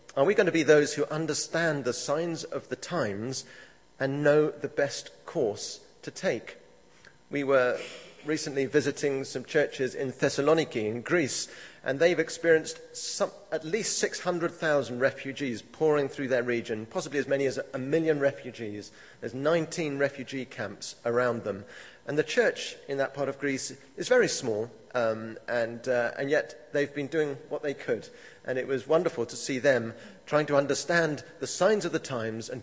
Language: English